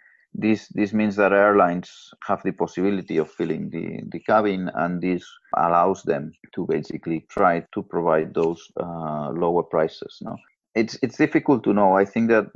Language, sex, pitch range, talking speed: English, male, 85-95 Hz, 165 wpm